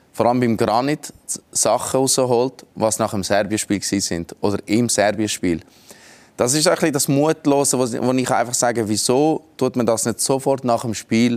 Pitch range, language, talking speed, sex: 105-130 Hz, German, 165 wpm, male